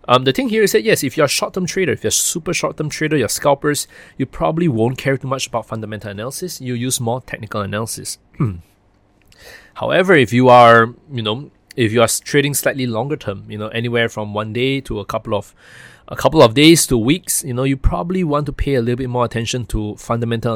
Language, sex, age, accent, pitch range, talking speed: English, male, 20-39, Malaysian, 110-145 Hz, 230 wpm